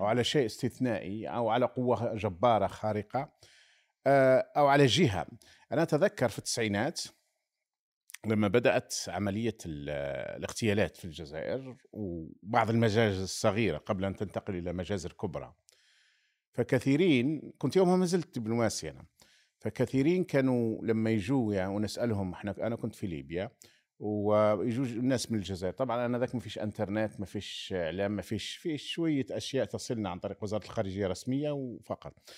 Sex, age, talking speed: male, 50-69, 135 wpm